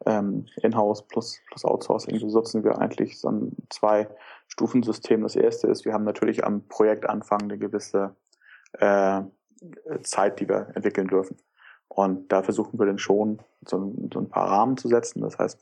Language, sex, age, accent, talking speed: German, male, 20-39, German, 170 wpm